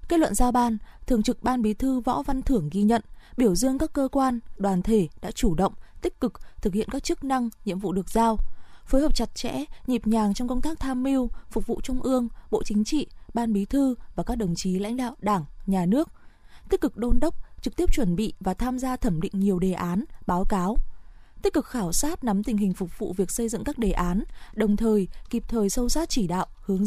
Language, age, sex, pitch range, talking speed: Vietnamese, 20-39, female, 200-255 Hz, 240 wpm